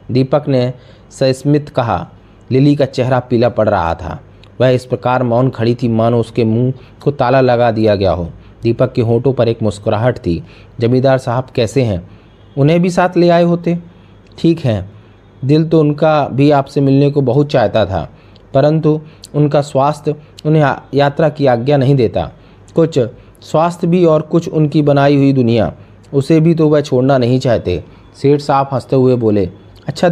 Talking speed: 170 wpm